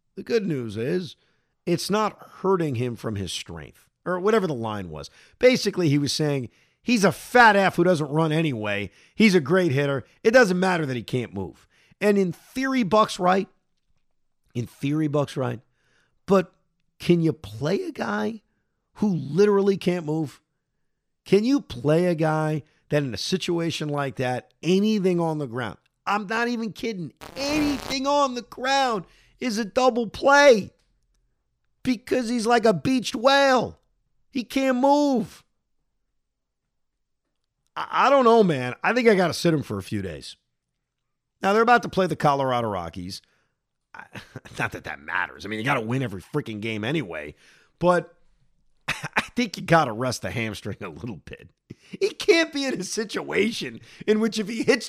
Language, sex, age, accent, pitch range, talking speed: English, male, 50-69, American, 140-220 Hz, 170 wpm